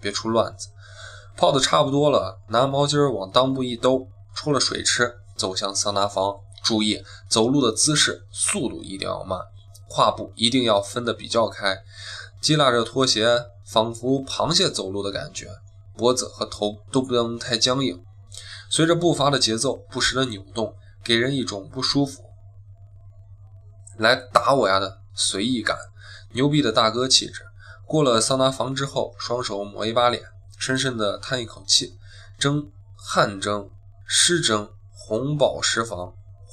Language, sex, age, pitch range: Chinese, male, 20-39, 100-125 Hz